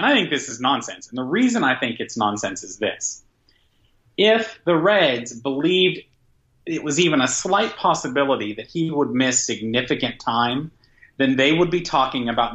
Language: English